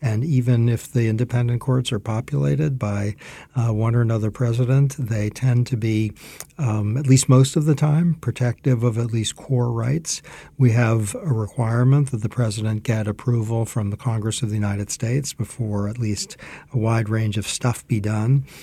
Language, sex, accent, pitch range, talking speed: English, male, American, 110-130 Hz, 185 wpm